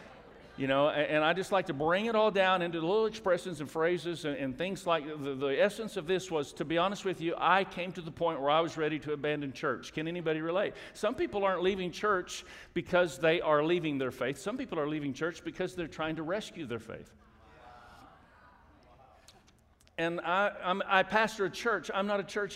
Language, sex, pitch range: English, male, 155-185 Hz